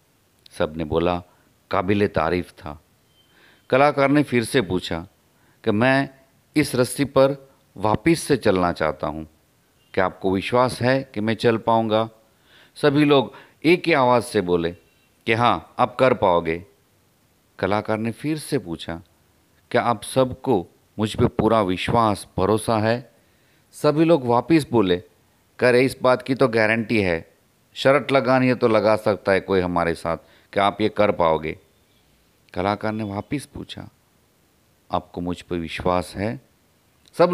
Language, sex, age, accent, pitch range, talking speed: Hindi, male, 40-59, native, 90-125 Hz, 145 wpm